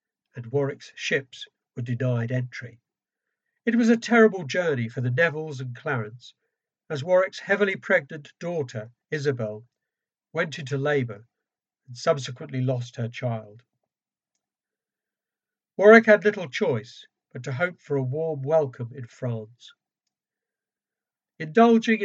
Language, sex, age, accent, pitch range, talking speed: English, male, 60-79, British, 125-180 Hz, 120 wpm